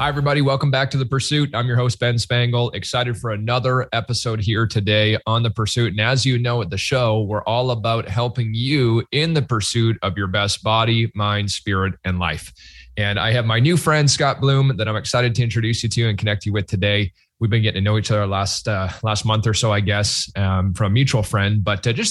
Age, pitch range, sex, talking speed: 20-39, 105-125 Hz, male, 235 wpm